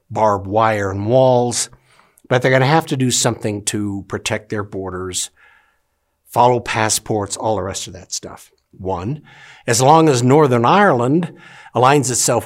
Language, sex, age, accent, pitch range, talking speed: English, male, 60-79, American, 105-145 Hz, 155 wpm